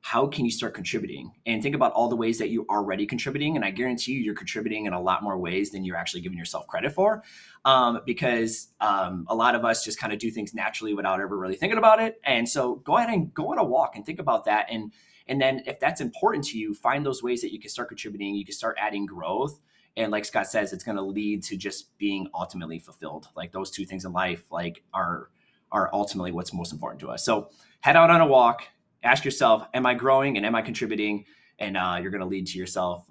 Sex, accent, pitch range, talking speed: male, American, 100-135 Hz, 245 wpm